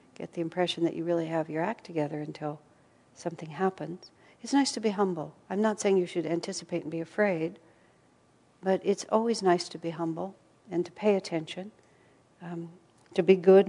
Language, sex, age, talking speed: English, female, 60-79, 185 wpm